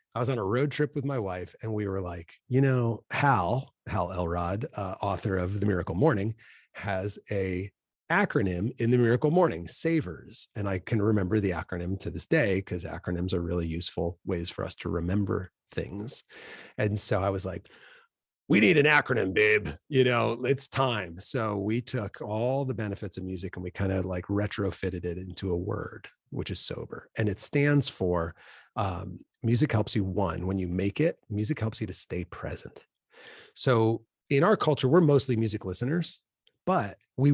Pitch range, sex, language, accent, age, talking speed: 95-130 Hz, male, English, American, 30-49, 185 wpm